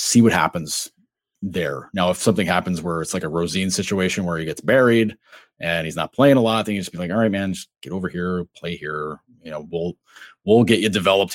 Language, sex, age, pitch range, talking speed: English, male, 30-49, 90-115 Hz, 240 wpm